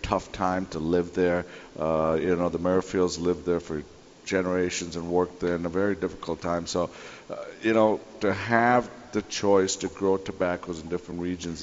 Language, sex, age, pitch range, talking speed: English, male, 50-69, 85-95 Hz, 185 wpm